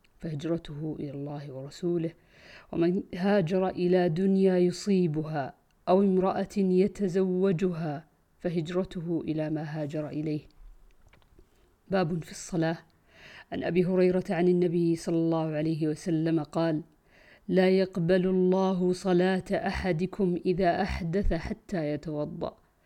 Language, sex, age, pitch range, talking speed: Arabic, female, 50-69, 170-190 Hz, 100 wpm